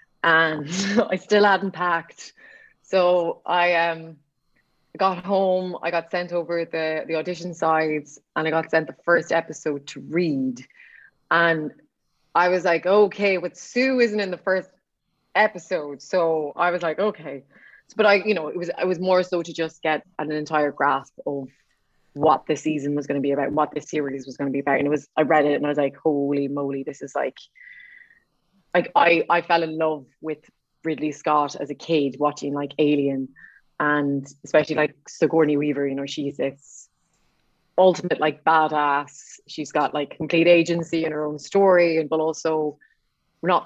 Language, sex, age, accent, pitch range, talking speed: English, female, 20-39, Irish, 150-175 Hz, 185 wpm